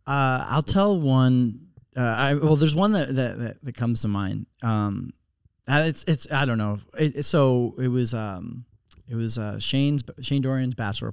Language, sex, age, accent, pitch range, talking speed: English, male, 20-39, American, 110-130 Hz, 175 wpm